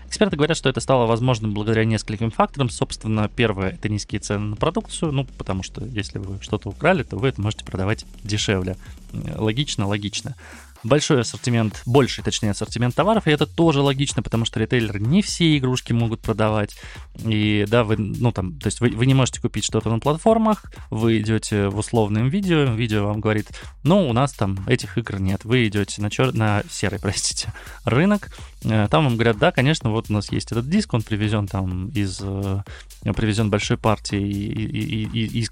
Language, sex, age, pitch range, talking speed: Russian, male, 20-39, 105-130 Hz, 180 wpm